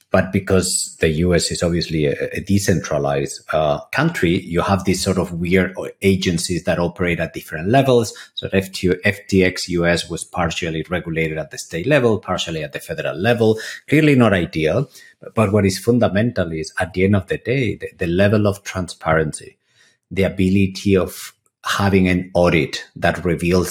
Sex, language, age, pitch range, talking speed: male, English, 50-69, 85-100 Hz, 165 wpm